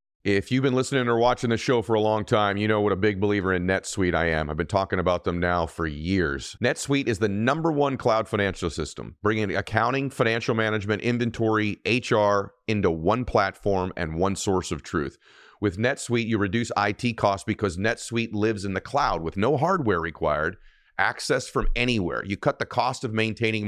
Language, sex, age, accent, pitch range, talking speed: English, male, 40-59, American, 95-120 Hz, 195 wpm